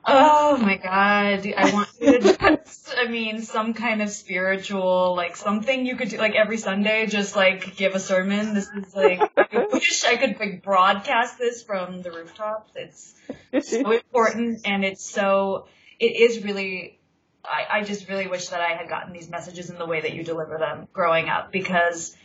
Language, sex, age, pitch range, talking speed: English, female, 20-39, 170-205 Hz, 185 wpm